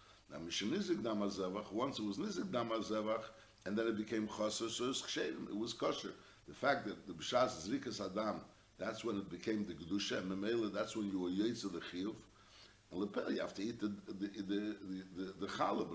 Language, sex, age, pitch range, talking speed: English, male, 60-79, 100-125 Hz, 180 wpm